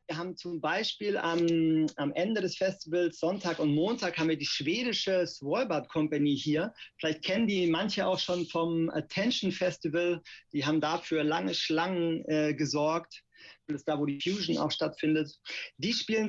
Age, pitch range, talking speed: 40-59, 150-180 Hz, 165 wpm